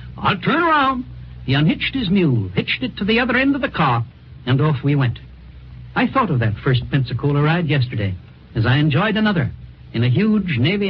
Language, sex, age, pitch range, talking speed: English, male, 60-79, 125-200 Hz, 200 wpm